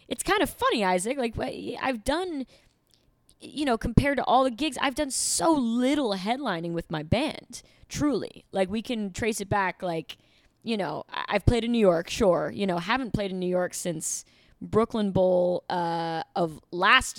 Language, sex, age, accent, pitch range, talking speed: English, female, 20-39, American, 180-230 Hz, 180 wpm